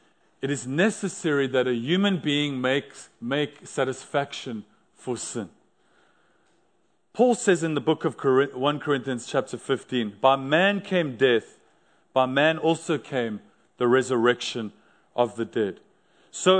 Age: 40-59